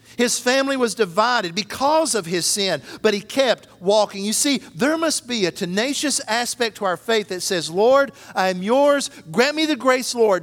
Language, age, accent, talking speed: English, 50-69, American, 195 wpm